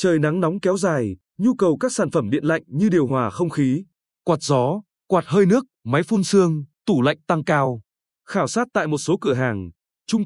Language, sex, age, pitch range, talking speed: Vietnamese, male, 20-39, 140-200 Hz, 215 wpm